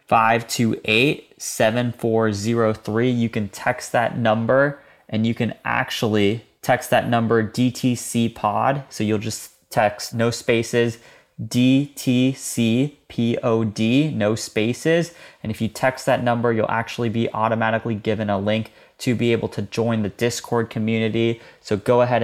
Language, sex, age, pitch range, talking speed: English, male, 20-39, 110-120 Hz, 150 wpm